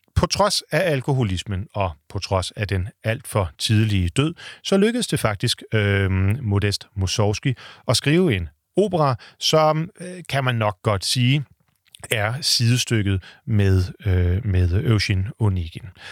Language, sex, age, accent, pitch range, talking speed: Danish, male, 40-59, native, 100-135 Hz, 140 wpm